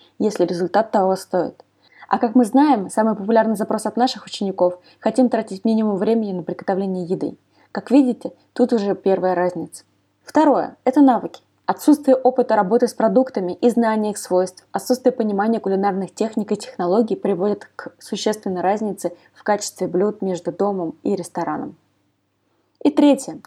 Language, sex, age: Russian, female, 20-39